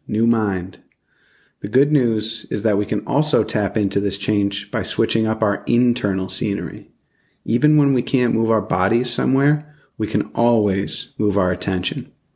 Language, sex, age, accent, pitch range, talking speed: English, male, 30-49, American, 100-120 Hz, 165 wpm